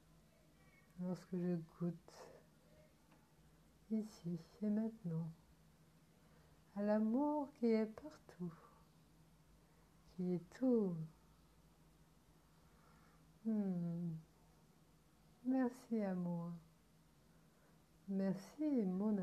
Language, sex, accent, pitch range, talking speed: French, female, French, 165-220 Hz, 60 wpm